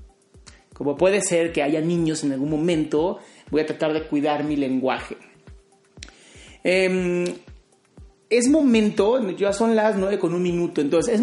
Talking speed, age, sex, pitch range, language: 150 wpm, 30-49, male, 160-205 Hz, Spanish